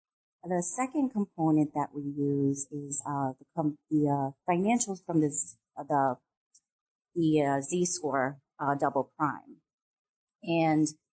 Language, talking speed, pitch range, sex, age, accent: English, 130 wpm, 150-180 Hz, female, 30-49, American